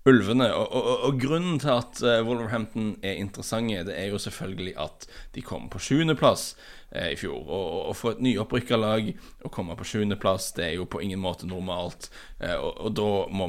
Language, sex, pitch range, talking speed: English, male, 95-115 Hz, 200 wpm